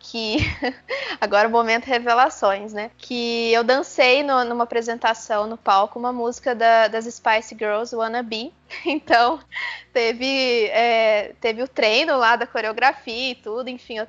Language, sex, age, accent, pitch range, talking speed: Portuguese, female, 20-39, Brazilian, 220-250 Hz, 150 wpm